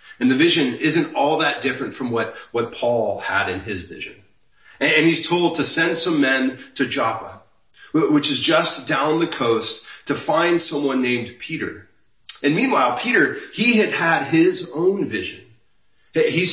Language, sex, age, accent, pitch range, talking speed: English, male, 30-49, American, 130-185 Hz, 165 wpm